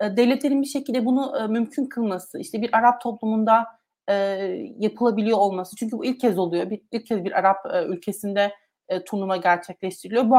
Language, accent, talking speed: Turkish, native, 150 wpm